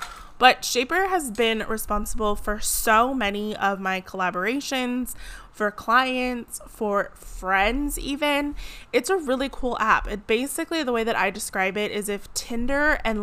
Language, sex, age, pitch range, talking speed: English, female, 20-39, 195-240 Hz, 150 wpm